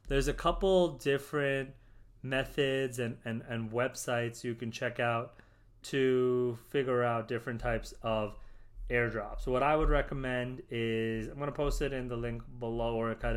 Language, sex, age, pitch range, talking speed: English, male, 30-49, 115-130 Hz, 165 wpm